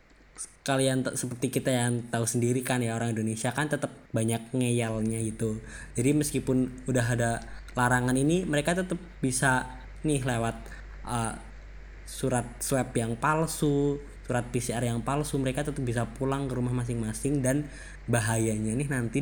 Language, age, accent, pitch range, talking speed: Indonesian, 10-29, native, 115-140 Hz, 145 wpm